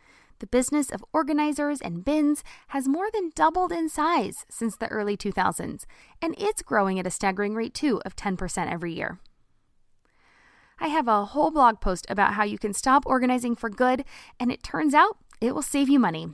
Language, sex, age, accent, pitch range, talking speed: English, female, 20-39, American, 200-275 Hz, 185 wpm